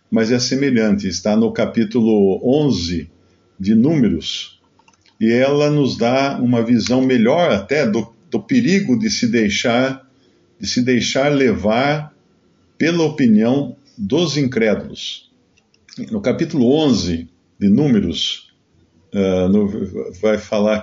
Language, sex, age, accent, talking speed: Portuguese, male, 50-69, Brazilian, 115 wpm